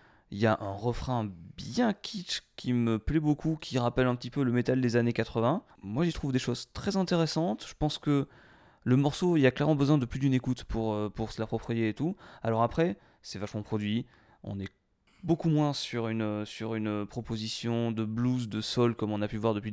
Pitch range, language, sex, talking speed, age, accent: 105-125 Hz, French, male, 220 wpm, 20-39, French